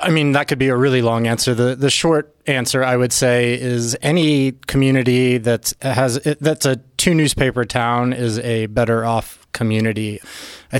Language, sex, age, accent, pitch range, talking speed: English, male, 20-39, American, 115-130 Hz, 185 wpm